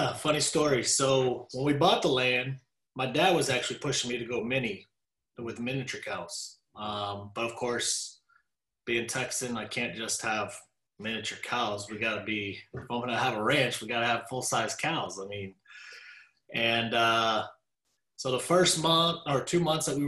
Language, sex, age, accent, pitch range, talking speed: English, male, 30-49, American, 115-140 Hz, 175 wpm